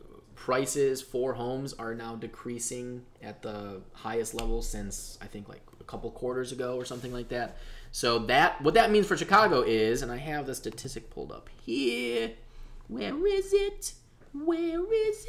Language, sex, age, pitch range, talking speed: English, male, 20-39, 115-155 Hz, 170 wpm